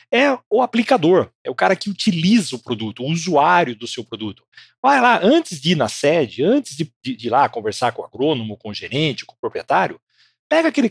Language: Portuguese